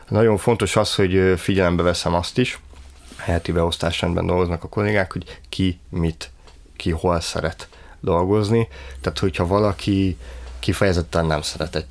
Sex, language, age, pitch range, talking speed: male, Hungarian, 30-49, 80-95 Hz, 135 wpm